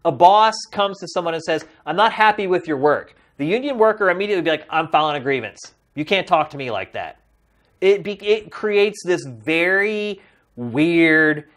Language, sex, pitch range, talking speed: English, male, 145-200 Hz, 185 wpm